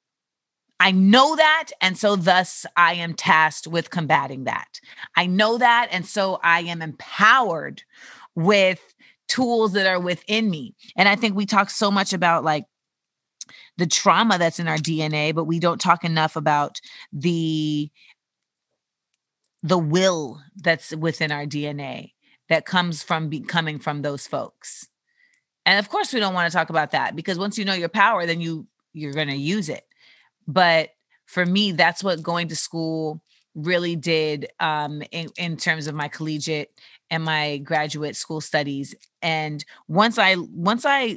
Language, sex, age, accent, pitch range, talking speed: English, female, 30-49, American, 160-195 Hz, 165 wpm